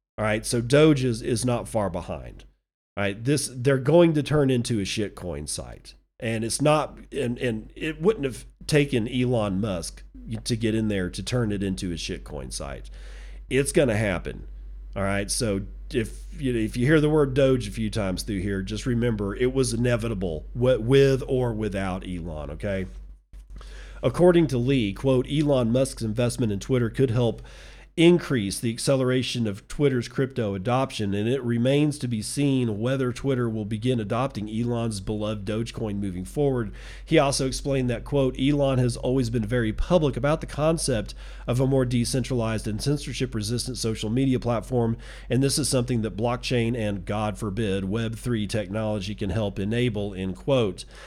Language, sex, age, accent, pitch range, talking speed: English, male, 40-59, American, 100-130 Hz, 175 wpm